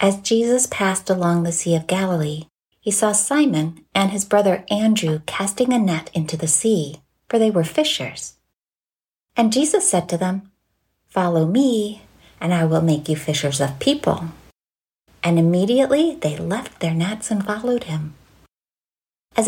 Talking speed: 155 wpm